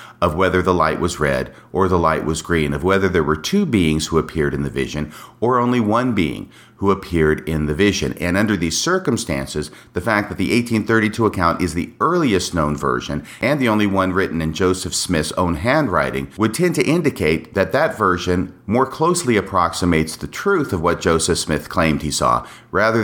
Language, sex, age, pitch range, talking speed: English, male, 50-69, 80-115 Hz, 200 wpm